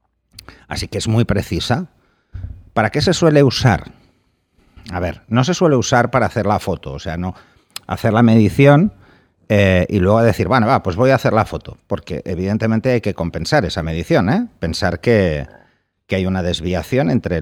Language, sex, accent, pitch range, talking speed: Spanish, male, Spanish, 90-120 Hz, 185 wpm